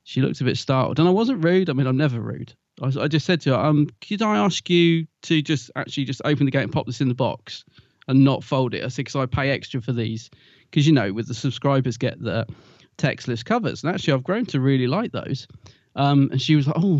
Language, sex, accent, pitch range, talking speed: English, male, British, 130-160 Hz, 265 wpm